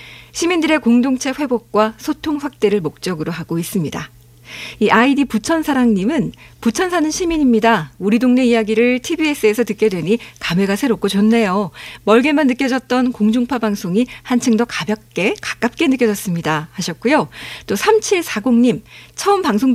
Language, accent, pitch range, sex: Korean, native, 200-275 Hz, female